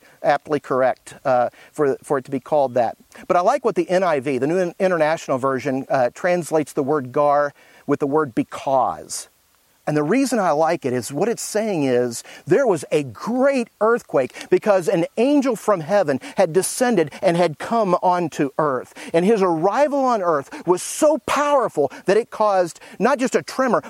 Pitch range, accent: 150-215 Hz, American